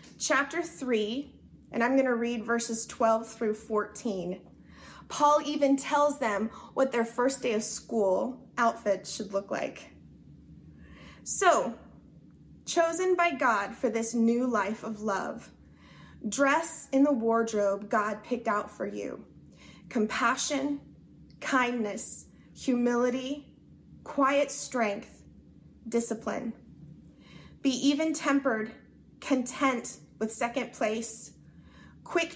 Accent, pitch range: American, 225-285 Hz